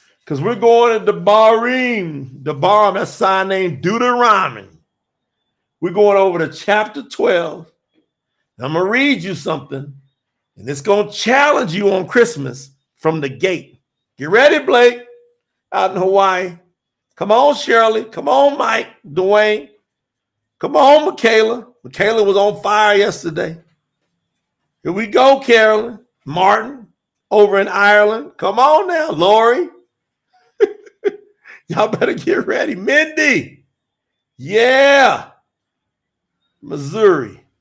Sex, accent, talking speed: male, American, 120 wpm